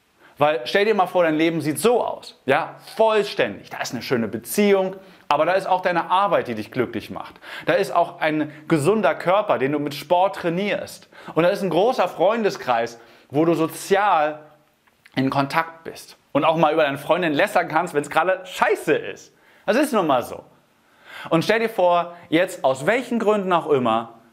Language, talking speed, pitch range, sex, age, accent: German, 190 wpm, 130-185 Hz, male, 30-49, German